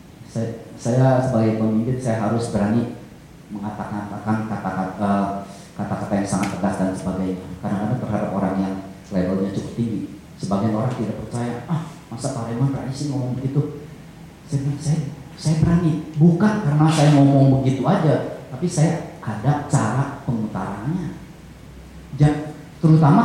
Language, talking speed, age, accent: English, 135 wpm, 30-49, Indonesian